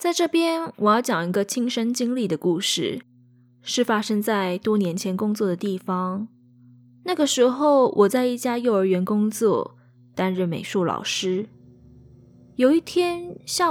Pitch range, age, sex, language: 180-275 Hz, 20-39, female, Chinese